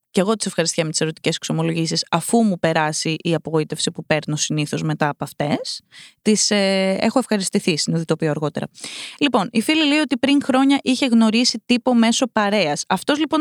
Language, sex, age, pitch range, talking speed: Greek, female, 20-39, 190-285 Hz, 175 wpm